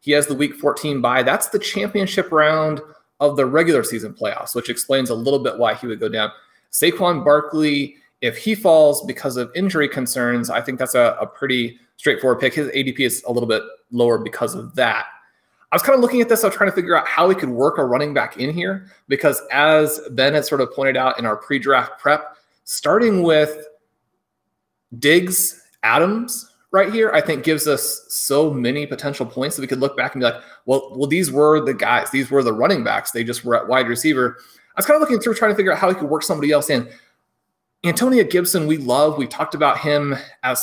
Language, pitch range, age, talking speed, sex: English, 130-160 Hz, 30-49, 225 wpm, male